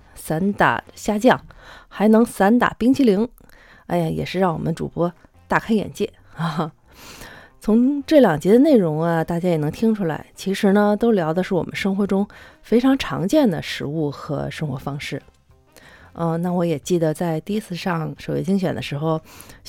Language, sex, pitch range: Chinese, female, 150-200 Hz